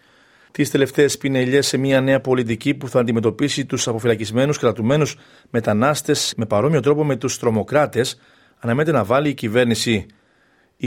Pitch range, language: 110-135 Hz, Greek